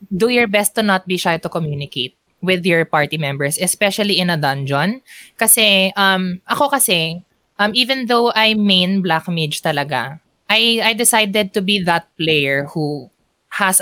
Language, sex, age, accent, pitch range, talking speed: Filipino, female, 20-39, native, 160-220 Hz, 155 wpm